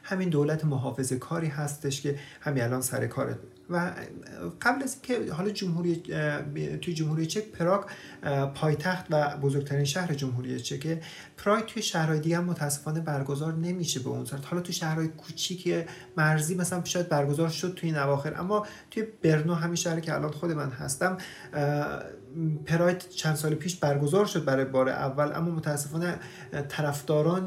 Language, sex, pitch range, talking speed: English, male, 140-170 Hz, 155 wpm